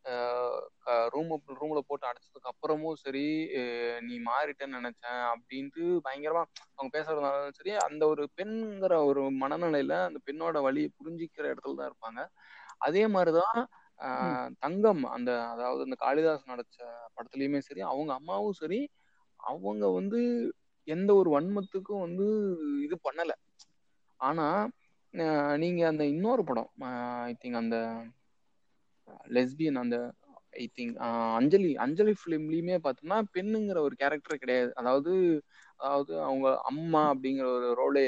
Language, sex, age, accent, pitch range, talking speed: Tamil, male, 20-39, native, 130-185 Hz, 125 wpm